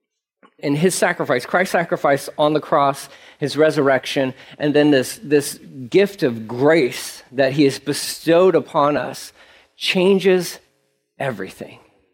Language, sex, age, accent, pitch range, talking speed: English, male, 40-59, American, 135-195 Hz, 125 wpm